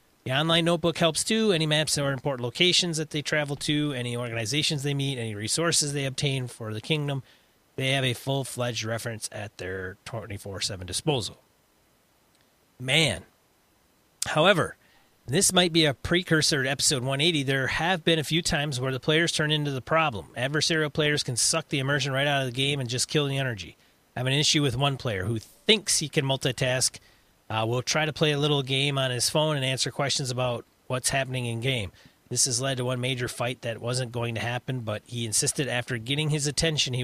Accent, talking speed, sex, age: American, 200 wpm, male, 30-49